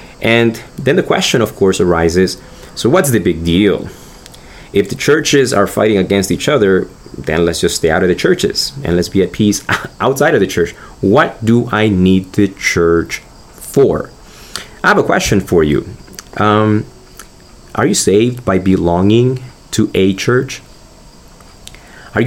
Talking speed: 160 wpm